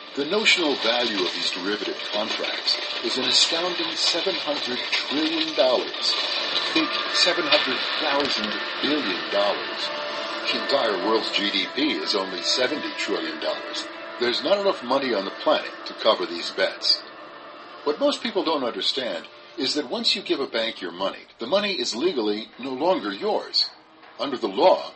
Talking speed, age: 145 wpm, 60-79